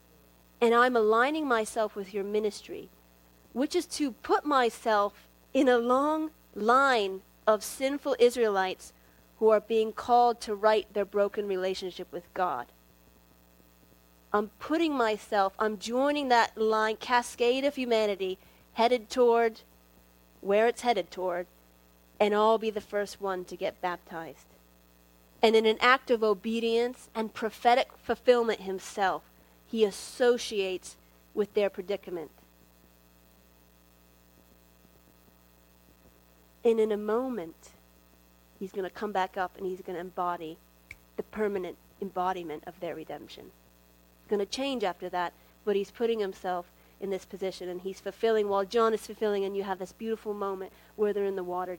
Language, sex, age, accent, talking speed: English, female, 30-49, American, 140 wpm